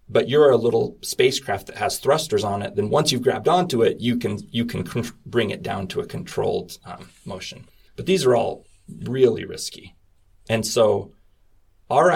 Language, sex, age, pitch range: English, male, 30-49, 100-130 Hz